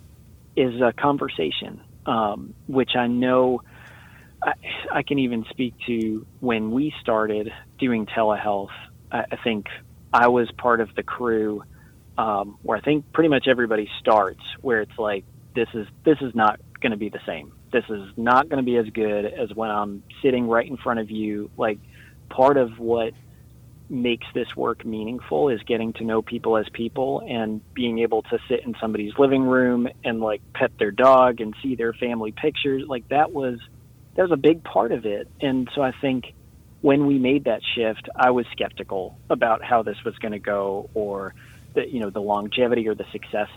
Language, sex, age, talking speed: English, male, 30-49, 190 wpm